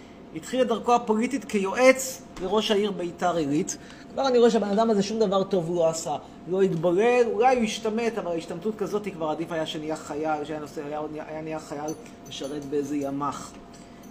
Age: 30-49